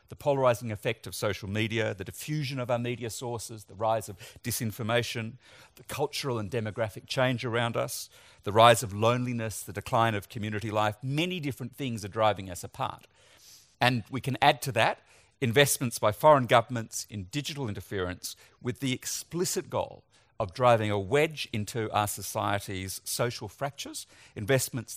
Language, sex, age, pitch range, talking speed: English, male, 50-69, 105-140 Hz, 160 wpm